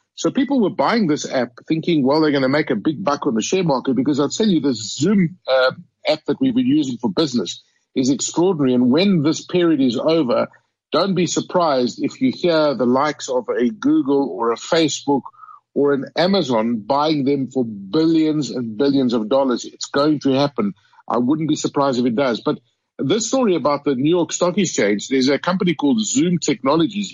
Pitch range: 130-180 Hz